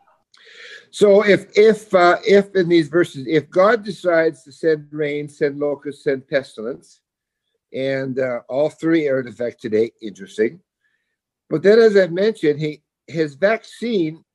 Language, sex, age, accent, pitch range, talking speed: English, male, 60-79, American, 145-235 Hz, 145 wpm